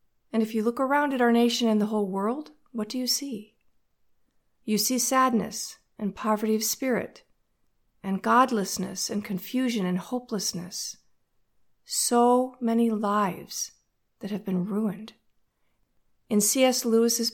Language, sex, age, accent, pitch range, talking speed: English, female, 40-59, American, 200-240 Hz, 135 wpm